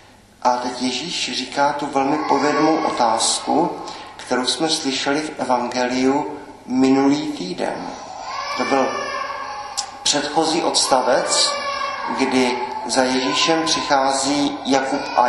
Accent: native